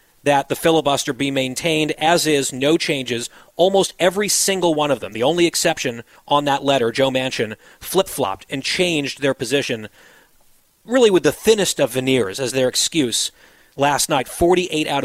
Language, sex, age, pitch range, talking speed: English, male, 40-59, 140-175 Hz, 165 wpm